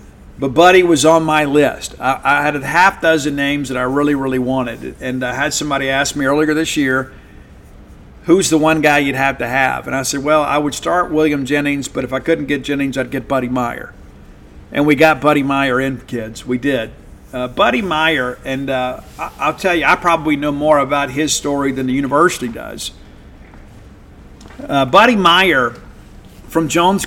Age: 50-69